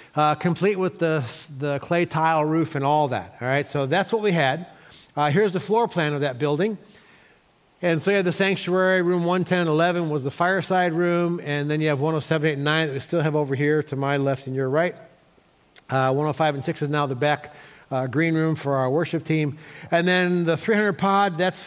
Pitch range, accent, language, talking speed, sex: 140-180 Hz, American, English, 225 wpm, male